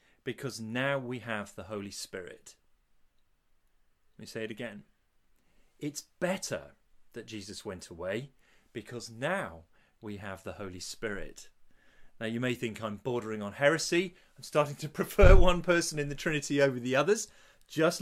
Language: English